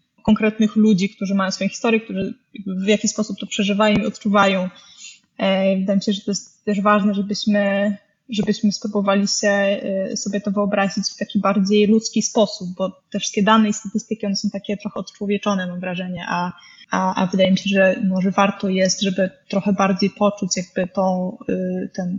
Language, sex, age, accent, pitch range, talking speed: Polish, female, 20-39, native, 195-215 Hz, 175 wpm